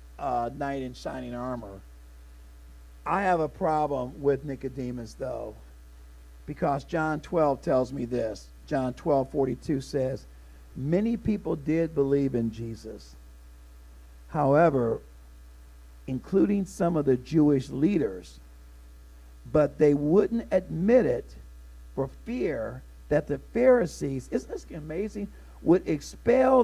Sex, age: male, 50-69